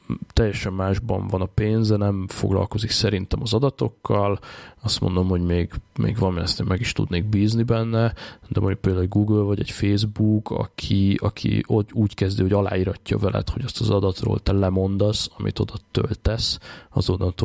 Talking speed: 160 wpm